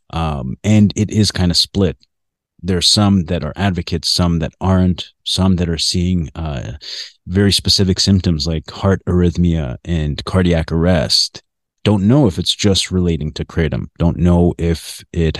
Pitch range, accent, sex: 85-95 Hz, American, male